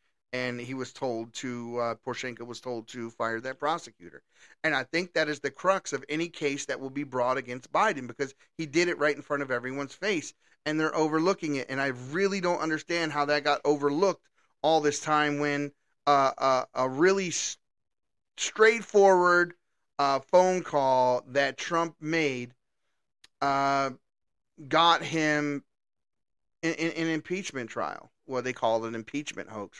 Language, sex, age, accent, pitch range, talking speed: English, male, 30-49, American, 140-170 Hz, 170 wpm